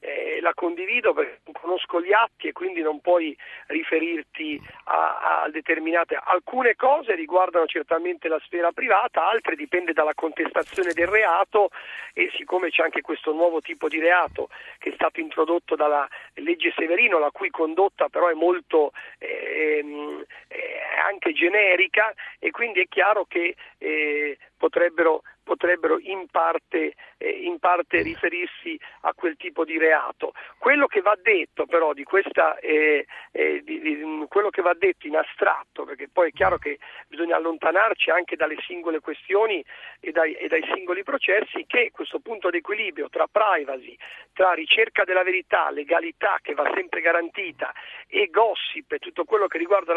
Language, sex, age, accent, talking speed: Italian, male, 40-59, native, 155 wpm